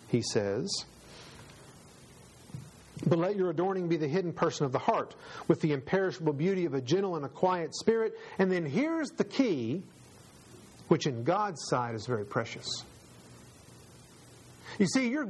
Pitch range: 130-190 Hz